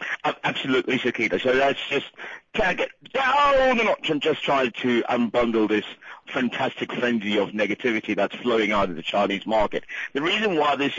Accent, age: British, 50-69